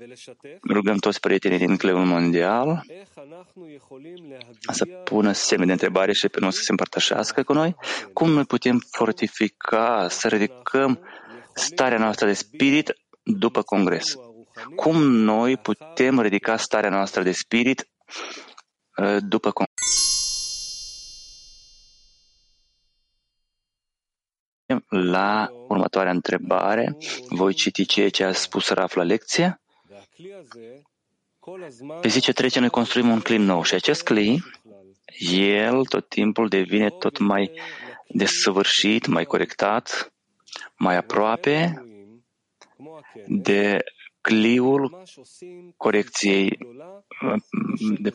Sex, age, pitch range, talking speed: male, 30-49, 100-135 Hz, 95 wpm